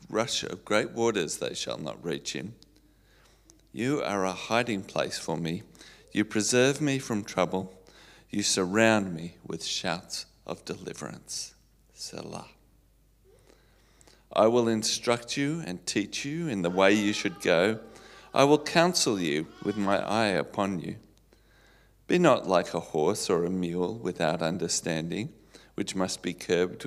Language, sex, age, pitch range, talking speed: English, male, 40-59, 90-115 Hz, 145 wpm